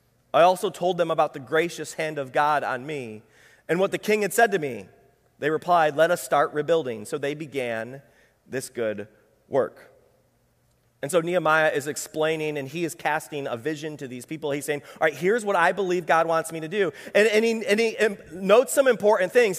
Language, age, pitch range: English, 30-49, 150-215 Hz